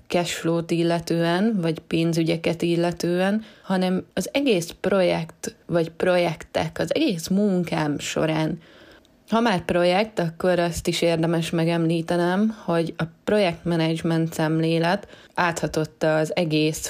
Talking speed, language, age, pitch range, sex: 105 wpm, Hungarian, 20-39, 160-175 Hz, female